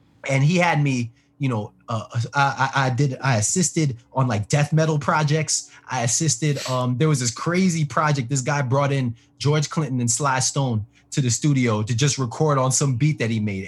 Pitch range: 120-155 Hz